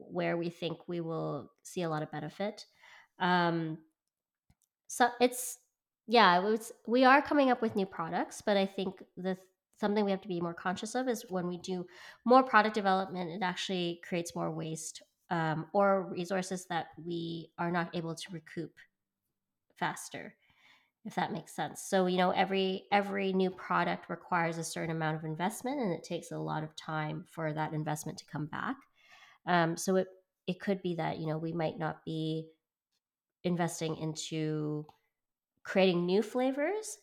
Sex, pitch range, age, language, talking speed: female, 155-190 Hz, 20-39, English, 170 wpm